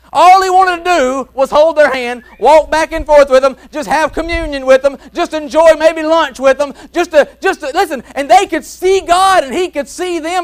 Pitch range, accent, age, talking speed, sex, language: 275-335 Hz, American, 30-49, 235 wpm, male, English